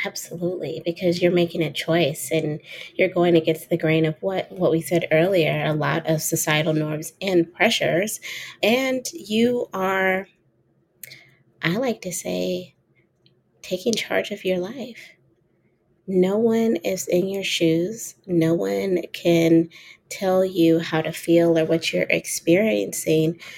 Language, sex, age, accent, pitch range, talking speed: English, female, 30-49, American, 165-200 Hz, 140 wpm